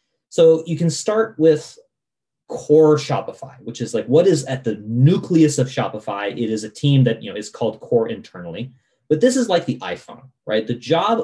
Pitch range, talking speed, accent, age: 115-145 Hz, 200 wpm, American, 30-49